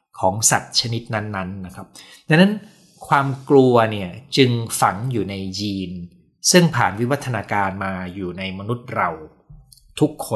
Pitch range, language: 100-135 Hz, Thai